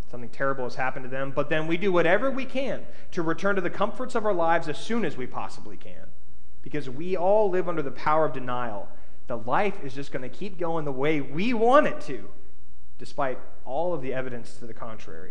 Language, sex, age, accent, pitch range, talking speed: English, male, 30-49, American, 115-155 Hz, 225 wpm